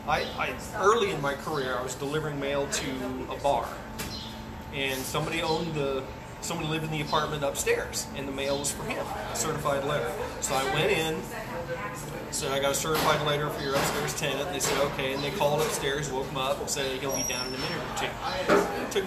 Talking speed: 215 wpm